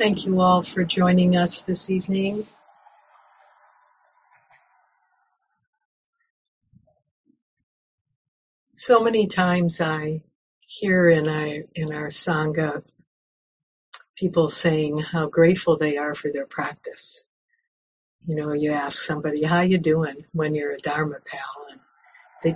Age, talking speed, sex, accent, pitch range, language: 60-79, 110 wpm, female, American, 155-205 Hz, English